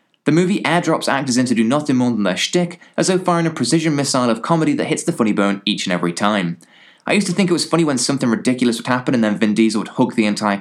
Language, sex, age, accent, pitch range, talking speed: English, male, 20-39, British, 105-145 Hz, 275 wpm